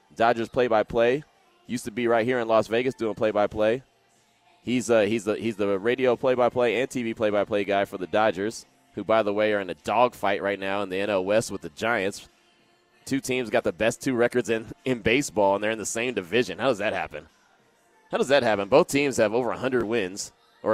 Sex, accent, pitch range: male, American, 100-120 Hz